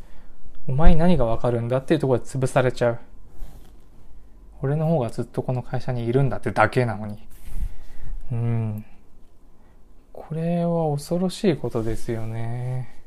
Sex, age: male, 20-39